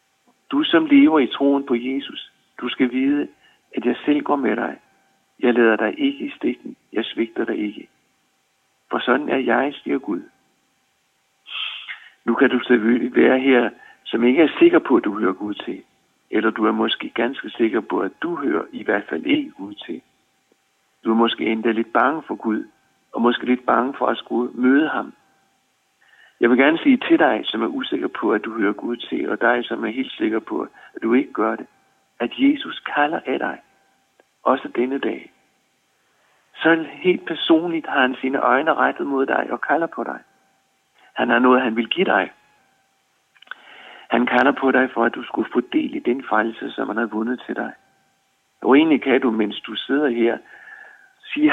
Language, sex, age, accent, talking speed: Danish, male, 60-79, native, 190 wpm